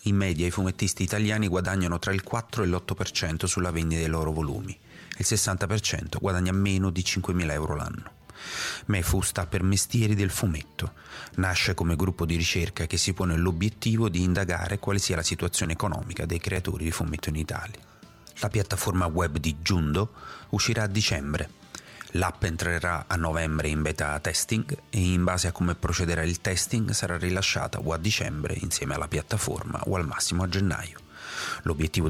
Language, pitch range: Italian, 80-100 Hz